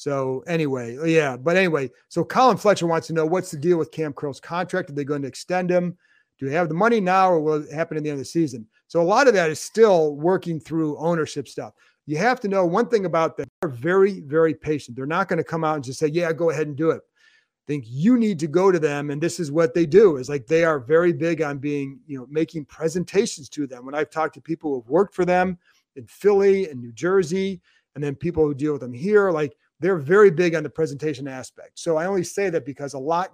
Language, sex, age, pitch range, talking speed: English, male, 40-59, 145-180 Hz, 260 wpm